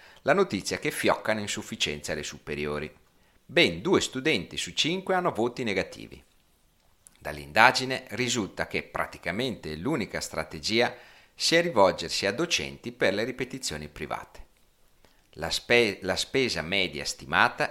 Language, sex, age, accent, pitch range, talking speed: Italian, male, 40-59, native, 85-120 Hz, 120 wpm